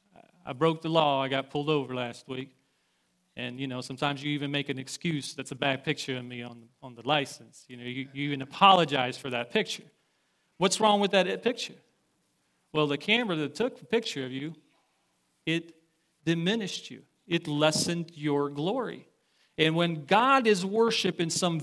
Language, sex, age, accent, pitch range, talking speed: English, male, 40-59, American, 150-200 Hz, 185 wpm